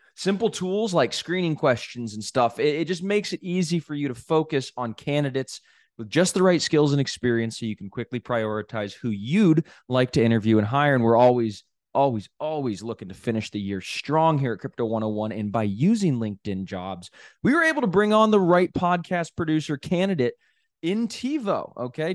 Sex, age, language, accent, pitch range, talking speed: male, 20-39, English, American, 115-175 Hz, 195 wpm